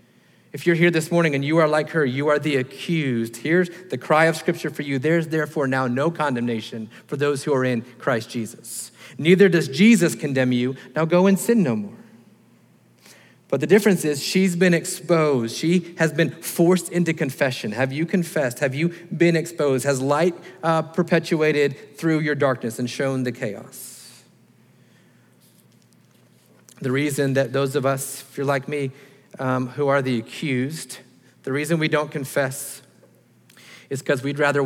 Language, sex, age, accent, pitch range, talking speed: English, male, 40-59, American, 130-160 Hz, 170 wpm